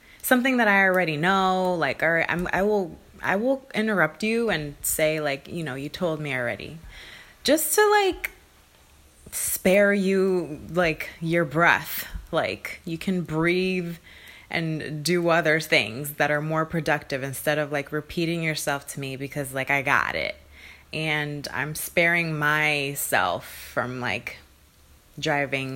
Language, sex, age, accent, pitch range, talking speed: English, female, 20-39, American, 130-170 Hz, 145 wpm